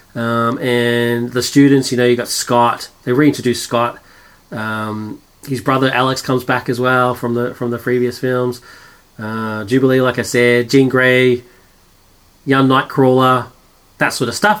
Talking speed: 160 wpm